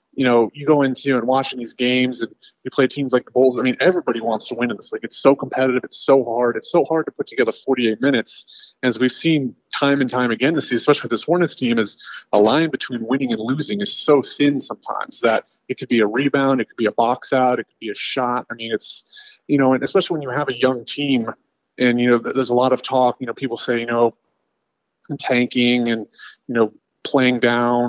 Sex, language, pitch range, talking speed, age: male, English, 120-135 Hz, 245 wpm, 30-49